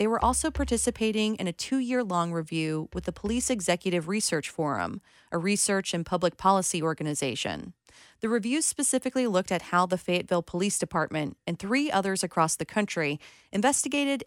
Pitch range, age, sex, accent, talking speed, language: 170-220 Hz, 30-49, female, American, 155 wpm, English